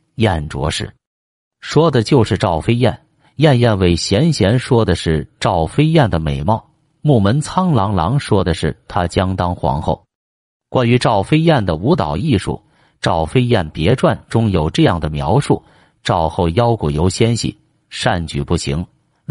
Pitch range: 90-140 Hz